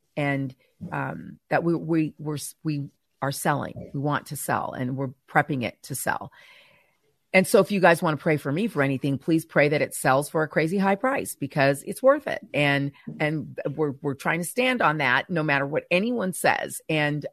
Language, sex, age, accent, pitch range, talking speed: English, female, 40-59, American, 135-175 Hz, 210 wpm